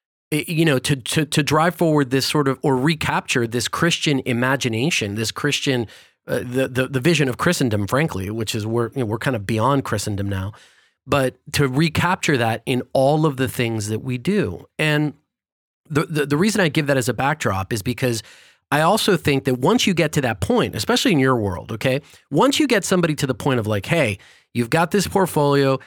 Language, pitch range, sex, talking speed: English, 130-160 Hz, male, 210 wpm